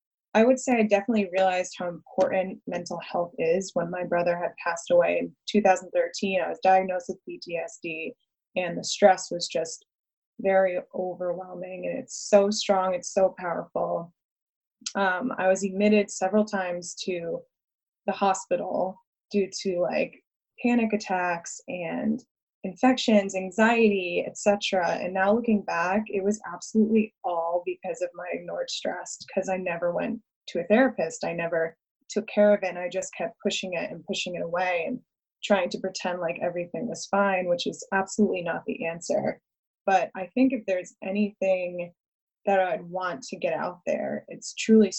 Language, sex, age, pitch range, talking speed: English, female, 20-39, 180-210 Hz, 165 wpm